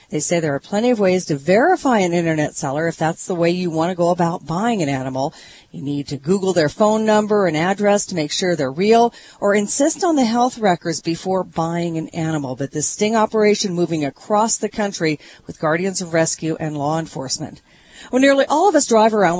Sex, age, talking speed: female, 40-59, 215 wpm